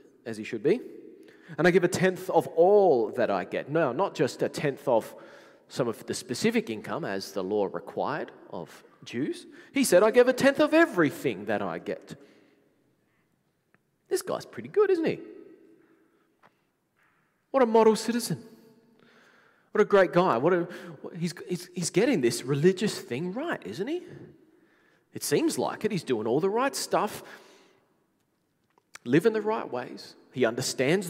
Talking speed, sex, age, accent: 165 wpm, male, 30-49, Australian